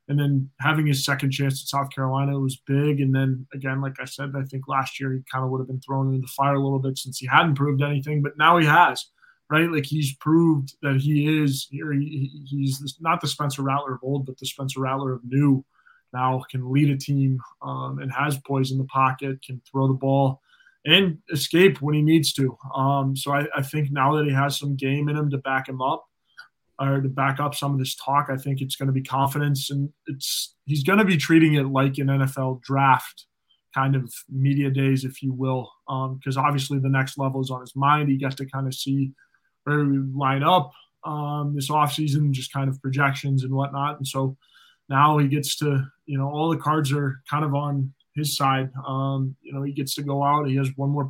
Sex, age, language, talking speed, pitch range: male, 20-39, English, 230 wpm, 135-145 Hz